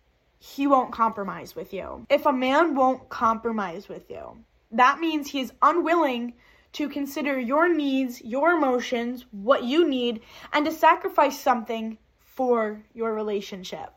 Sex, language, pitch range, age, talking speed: female, English, 225-290 Hz, 10-29, 140 wpm